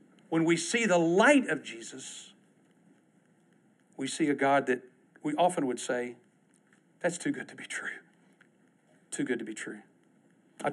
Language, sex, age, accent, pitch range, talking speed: English, male, 50-69, American, 140-185 Hz, 155 wpm